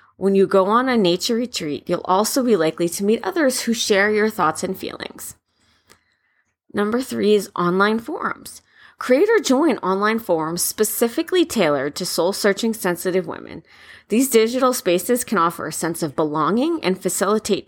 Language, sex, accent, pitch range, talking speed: English, female, American, 175-235 Hz, 155 wpm